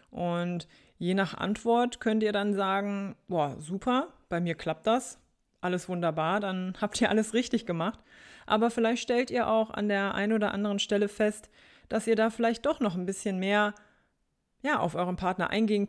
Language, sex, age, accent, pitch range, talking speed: German, female, 20-39, German, 180-225 Hz, 180 wpm